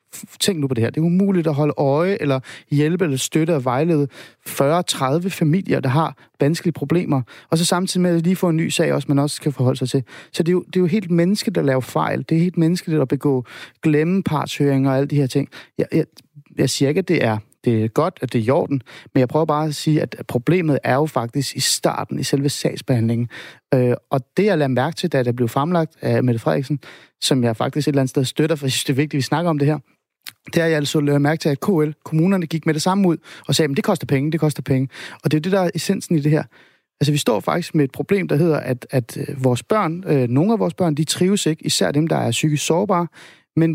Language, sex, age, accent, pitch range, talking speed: Danish, male, 30-49, native, 135-165 Hz, 265 wpm